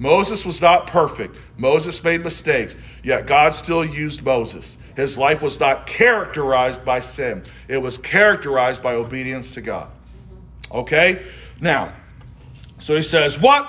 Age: 40-59